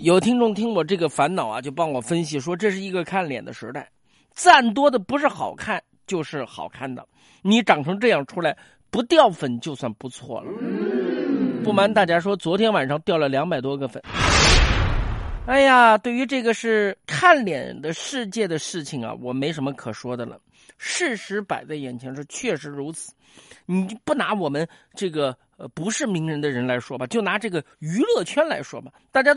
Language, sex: Chinese, male